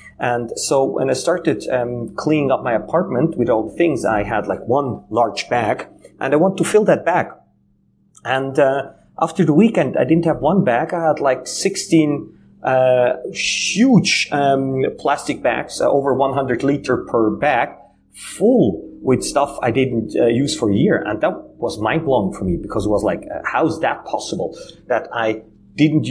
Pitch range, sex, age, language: 115-160 Hz, male, 30-49, English